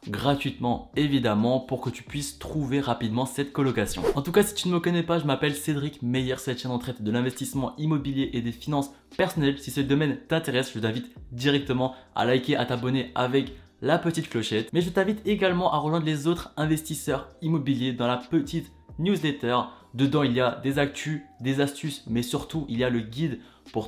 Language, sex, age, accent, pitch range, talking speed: French, male, 20-39, French, 130-170 Hz, 200 wpm